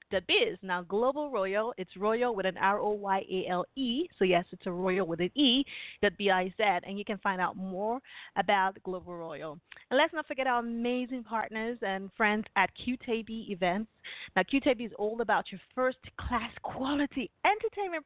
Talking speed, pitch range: 170 wpm, 190-260 Hz